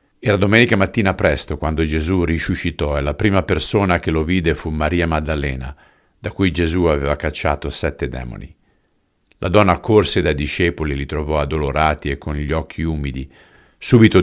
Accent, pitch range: native, 75-95 Hz